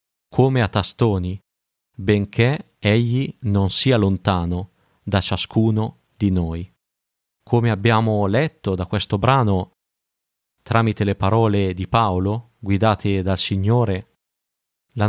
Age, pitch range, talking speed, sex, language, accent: 30-49, 100-120 Hz, 105 wpm, male, Italian, native